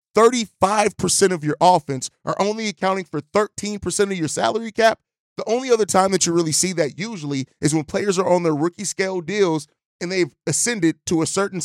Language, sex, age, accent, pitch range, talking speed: English, male, 30-49, American, 155-190 Hz, 195 wpm